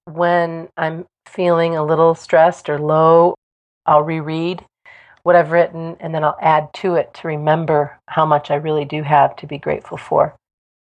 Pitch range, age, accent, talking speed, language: 145-165 Hz, 40-59, American, 170 wpm, English